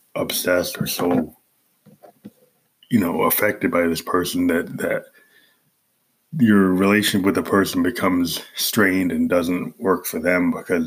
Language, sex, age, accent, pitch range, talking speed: English, male, 20-39, American, 85-110 Hz, 135 wpm